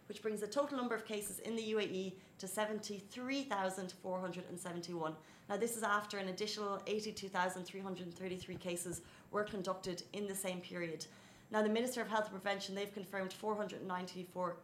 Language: Arabic